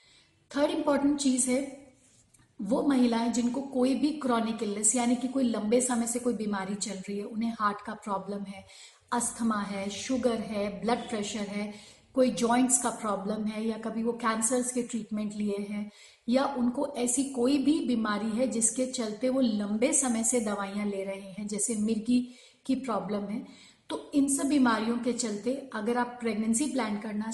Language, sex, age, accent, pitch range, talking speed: Hindi, female, 40-59, native, 215-255 Hz, 175 wpm